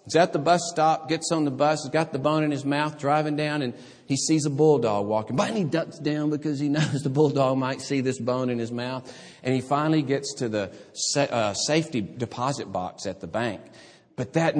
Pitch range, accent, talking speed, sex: 115-165 Hz, American, 225 wpm, male